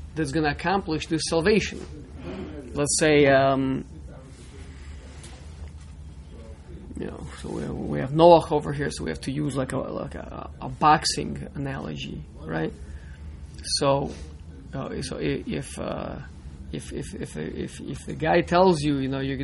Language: English